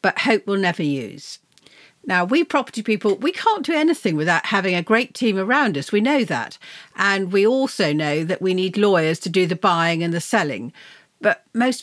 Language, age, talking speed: English, 50-69, 205 wpm